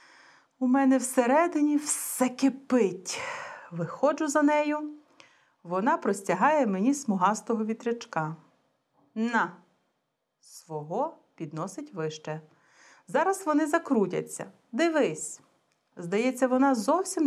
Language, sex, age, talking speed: Bulgarian, female, 40-59, 85 wpm